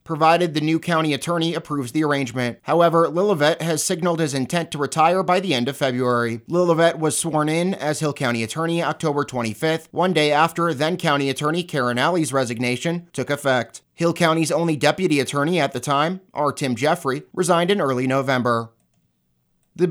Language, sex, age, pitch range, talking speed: English, male, 30-49, 135-170 Hz, 170 wpm